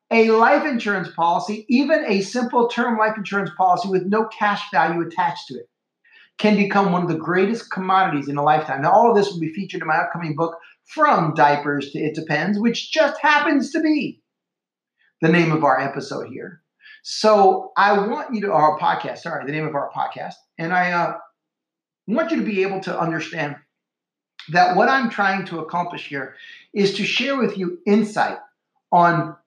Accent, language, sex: American, English, male